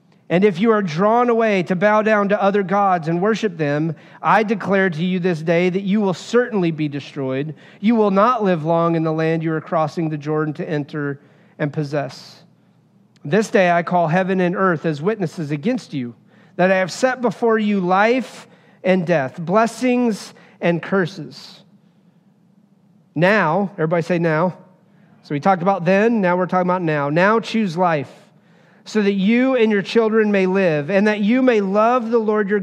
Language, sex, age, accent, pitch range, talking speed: English, male, 40-59, American, 170-210 Hz, 185 wpm